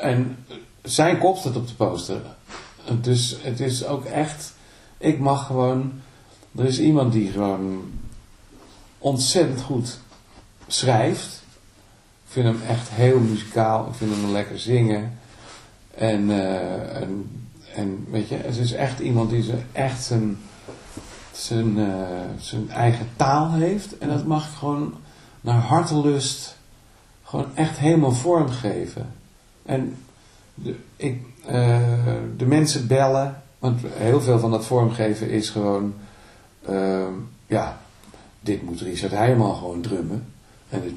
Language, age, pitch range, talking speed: Dutch, 50-69, 105-130 Hz, 125 wpm